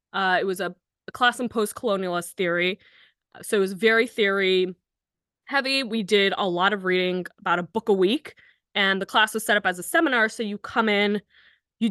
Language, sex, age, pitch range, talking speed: English, female, 20-39, 190-235 Hz, 200 wpm